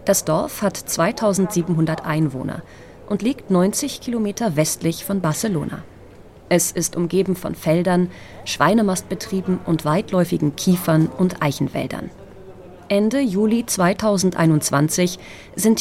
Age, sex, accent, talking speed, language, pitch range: 30-49, female, German, 105 wpm, German, 160-215 Hz